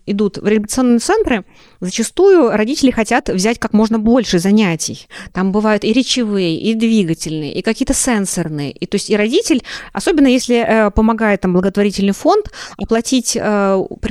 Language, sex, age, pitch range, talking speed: Russian, female, 20-39, 205-255 Hz, 145 wpm